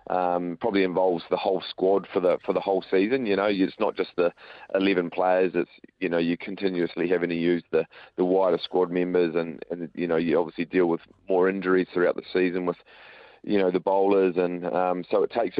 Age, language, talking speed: 30-49, English, 215 wpm